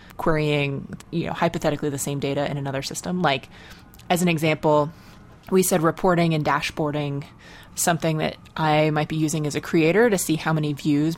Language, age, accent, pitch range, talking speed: English, 20-39, American, 150-180 Hz, 175 wpm